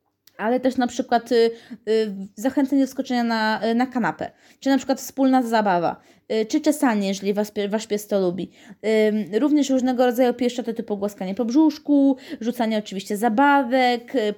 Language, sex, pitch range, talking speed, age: Polish, female, 215-265 Hz, 170 wpm, 20-39